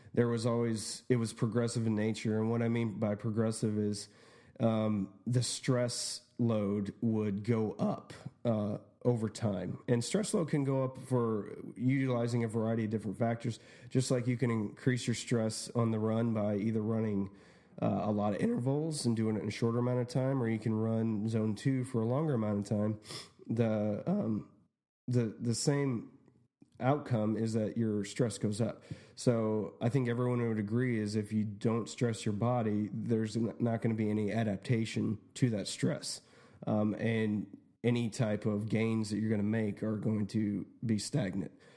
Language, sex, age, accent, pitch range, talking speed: English, male, 30-49, American, 105-120 Hz, 185 wpm